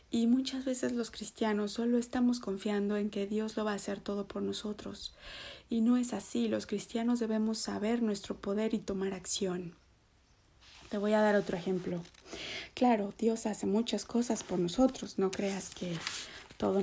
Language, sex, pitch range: Spanish, female, 195-225 Hz